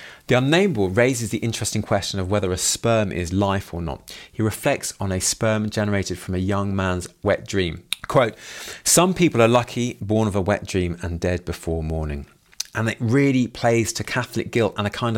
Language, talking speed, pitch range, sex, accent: English, 200 wpm, 90-115 Hz, male, British